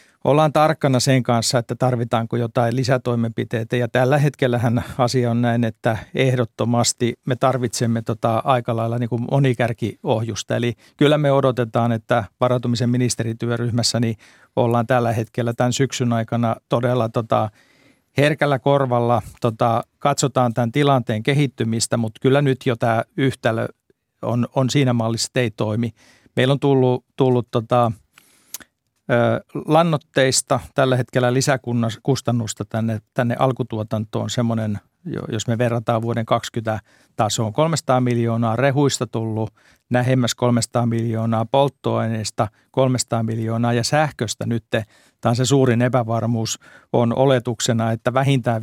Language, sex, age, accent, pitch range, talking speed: Finnish, male, 50-69, native, 115-130 Hz, 115 wpm